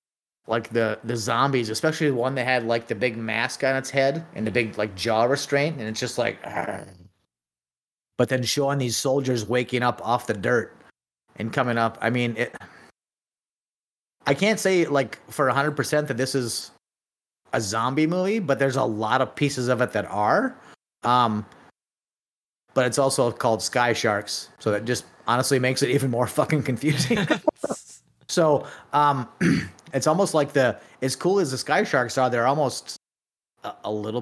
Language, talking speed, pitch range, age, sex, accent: English, 180 wpm, 110-135 Hz, 30-49, male, American